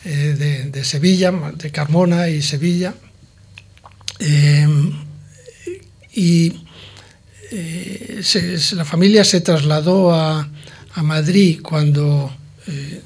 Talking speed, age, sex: 90 wpm, 60-79, male